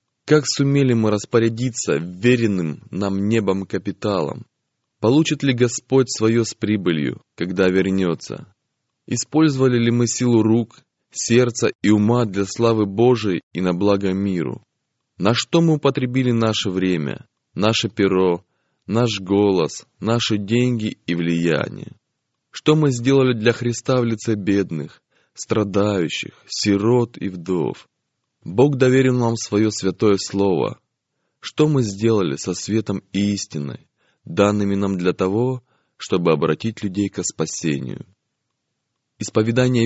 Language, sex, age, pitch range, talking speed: Russian, male, 20-39, 100-125 Hz, 120 wpm